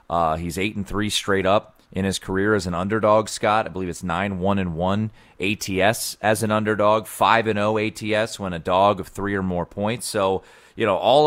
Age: 30-49